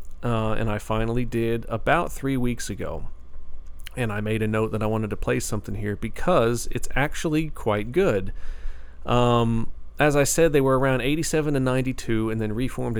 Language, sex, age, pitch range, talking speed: English, male, 40-59, 100-125 Hz, 180 wpm